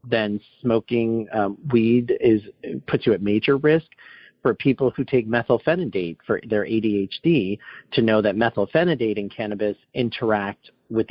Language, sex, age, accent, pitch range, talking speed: English, male, 40-59, American, 100-130 Hz, 140 wpm